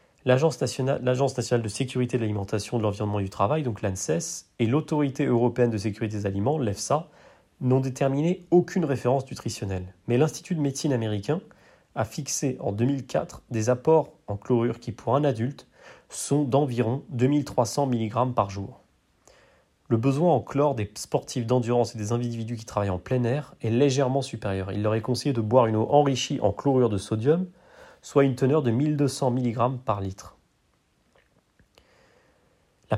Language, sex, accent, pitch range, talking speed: French, male, French, 110-140 Hz, 165 wpm